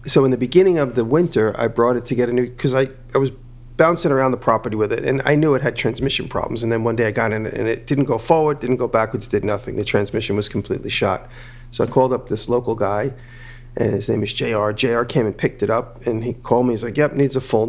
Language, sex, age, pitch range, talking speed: English, male, 40-59, 115-130 Hz, 275 wpm